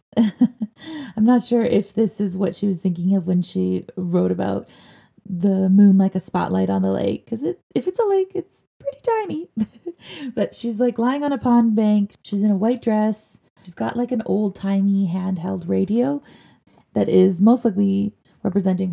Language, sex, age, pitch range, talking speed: English, female, 30-49, 180-220 Hz, 180 wpm